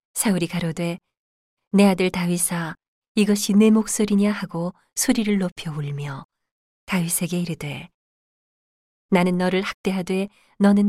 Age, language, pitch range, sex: 40-59, Korean, 170-200 Hz, female